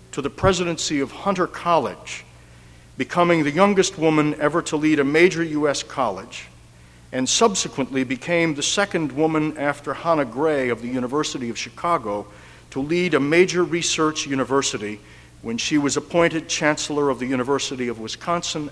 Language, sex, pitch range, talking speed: English, male, 120-170 Hz, 150 wpm